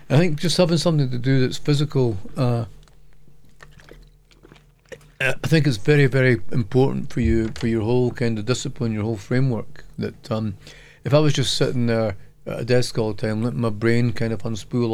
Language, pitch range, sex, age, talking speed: Spanish, 110-140 Hz, male, 40-59, 190 wpm